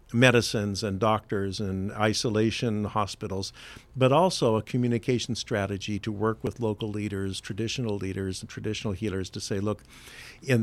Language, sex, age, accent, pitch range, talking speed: English, male, 50-69, American, 105-130 Hz, 140 wpm